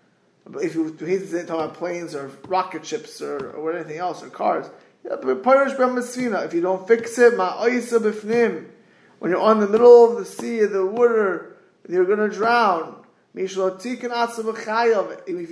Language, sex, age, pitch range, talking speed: English, male, 20-39, 185-230 Hz, 135 wpm